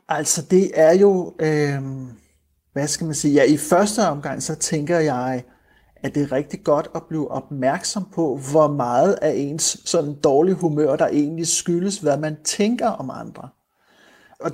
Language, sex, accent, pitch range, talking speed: Danish, male, native, 145-180 Hz, 165 wpm